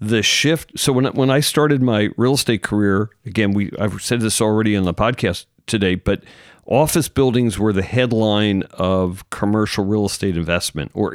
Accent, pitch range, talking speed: American, 100-125 Hz, 180 wpm